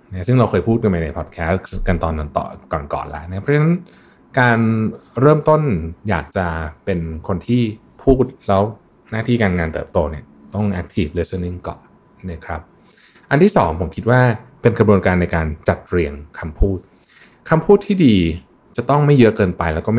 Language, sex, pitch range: Thai, male, 85-120 Hz